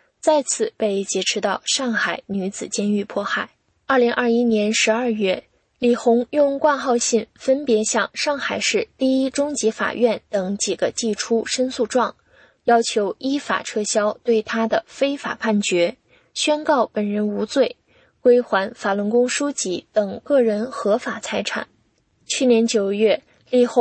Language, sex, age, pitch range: English, female, 20-39, 205-260 Hz